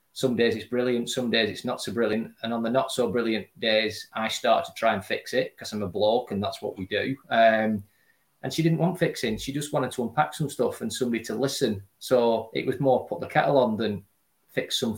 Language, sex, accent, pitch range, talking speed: English, male, British, 110-135 Hz, 245 wpm